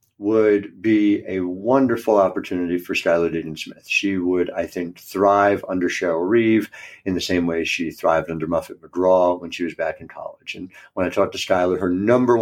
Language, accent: English, American